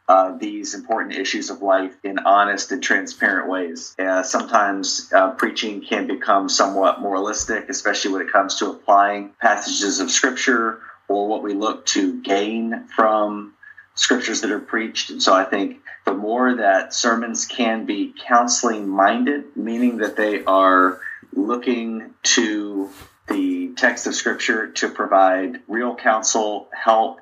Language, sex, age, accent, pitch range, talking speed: English, male, 30-49, American, 100-135 Hz, 145 wpm